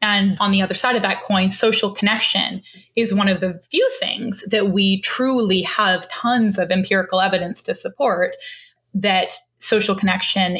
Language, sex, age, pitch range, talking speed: English, female, 10-29, 190-225 Hz, 165 wpm